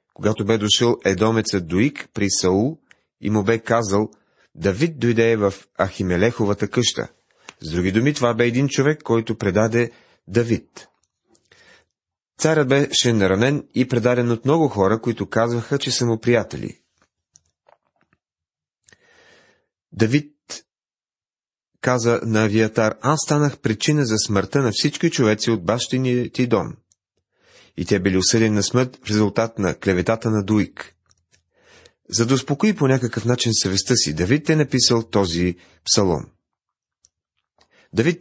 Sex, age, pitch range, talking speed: male, 30-49, 105-130 Hz, 130 wpm